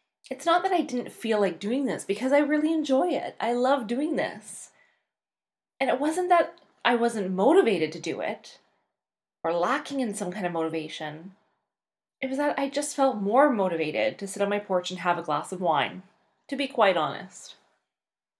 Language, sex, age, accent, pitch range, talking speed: English, female, 20-39, American, 180-265 Hz, 190 wpm